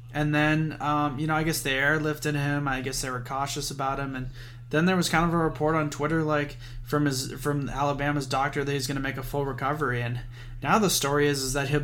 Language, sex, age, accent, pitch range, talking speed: English, male, 20-39, American, 125-145 Hz, 250 wpm